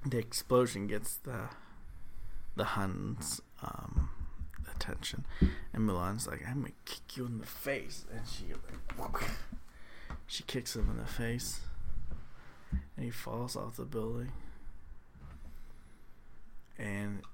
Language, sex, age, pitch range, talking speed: English, male, 20-39, 90-120 Hz, 120 wpm